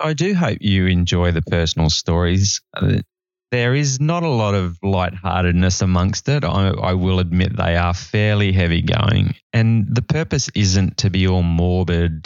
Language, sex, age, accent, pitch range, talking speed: English, male, 20-39, Australian, 90-120 Hz, 165 wpm